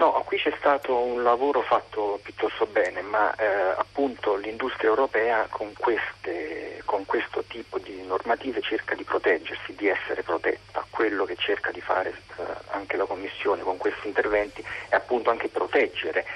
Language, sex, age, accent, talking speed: Italian, male, 40-59, native, 160 wpm